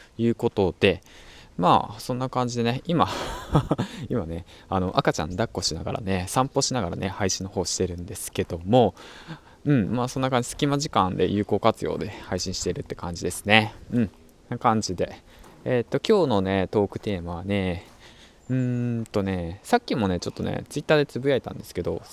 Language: Japanese